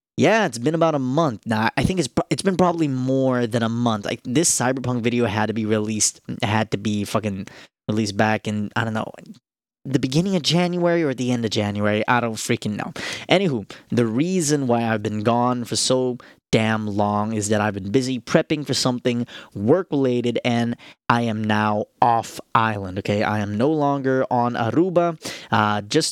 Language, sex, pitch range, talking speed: English, male, 110-155 Hz, 190 wpm